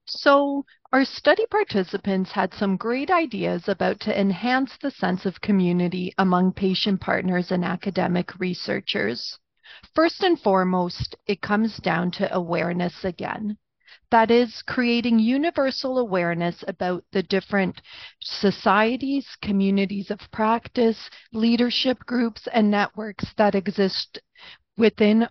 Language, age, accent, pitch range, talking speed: English, 40-59, American, 185-235 Hz, 115 wpm